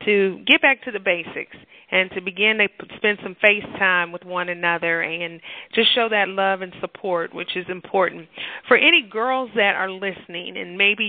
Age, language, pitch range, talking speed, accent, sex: 40-59, English, 190-220 Hz, 190 wpm, American, female